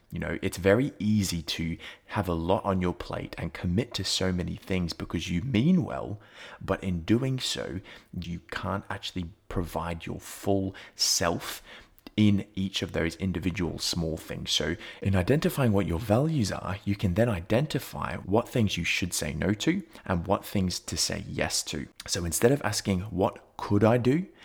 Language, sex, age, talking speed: English, male, 20-39, 180 wpm